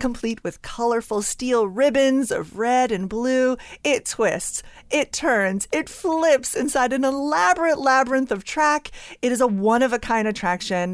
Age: 30-49